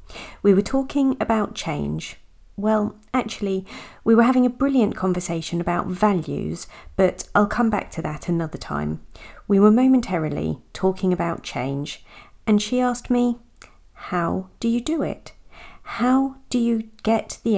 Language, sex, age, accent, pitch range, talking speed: English, female, 40-59, British, 160-230 Hz, 145 wpm